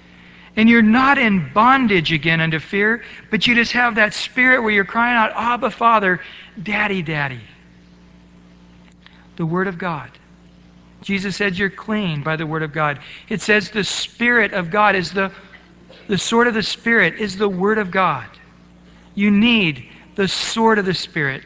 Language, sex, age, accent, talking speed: English, male, 60-79, American, 170 wpm